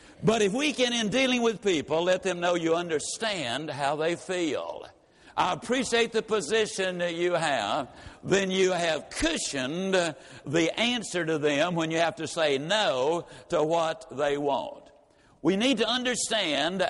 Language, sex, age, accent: English, male, 60-79, American